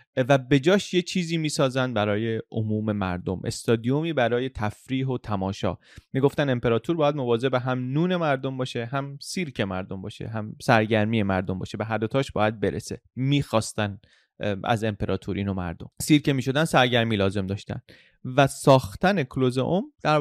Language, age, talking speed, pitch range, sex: Persian, 30-49, 145 wpm, 110-145 Hz, male